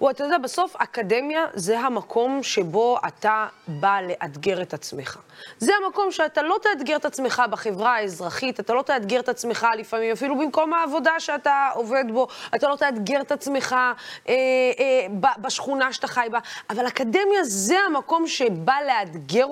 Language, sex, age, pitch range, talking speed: Hebrew, female, 20-39, 220-330 Hz, 155 wpm